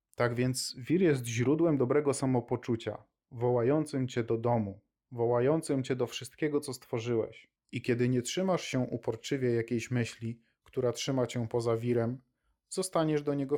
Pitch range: 120-145 Hz